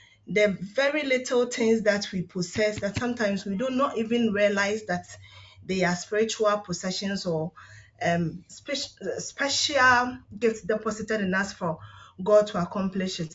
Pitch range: 175-225 Hz